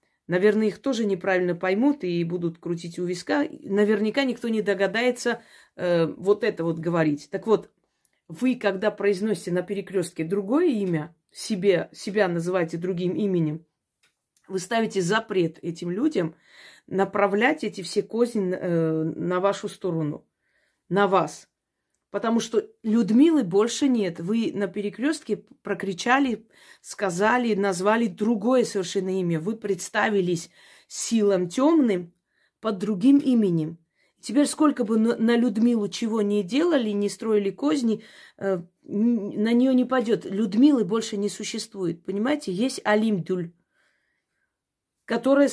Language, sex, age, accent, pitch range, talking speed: Russian, female, 30-49, native, 185-230 Hz, 120 wpm